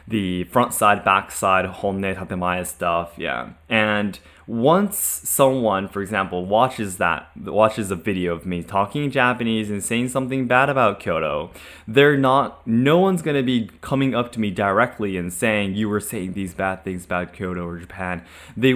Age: 20-39